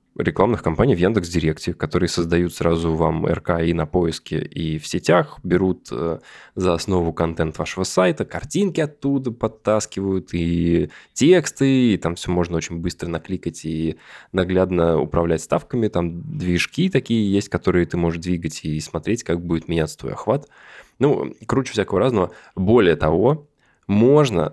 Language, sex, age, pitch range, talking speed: Russian, male, 20-39, 85-100 Hz, 145 wpm